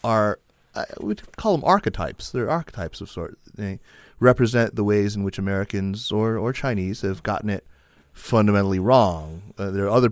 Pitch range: 90-105 Hz